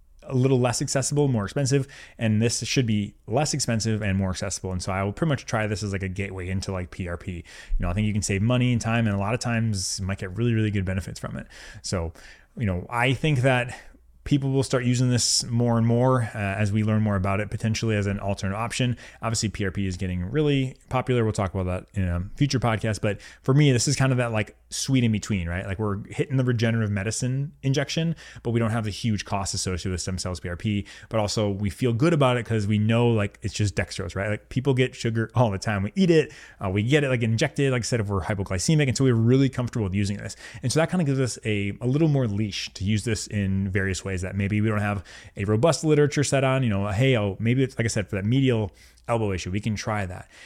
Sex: male